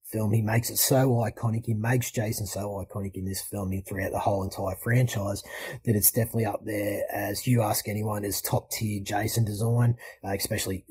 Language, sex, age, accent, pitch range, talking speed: English, male, 30-49, Australian, 105-120 Hz, 200 wpm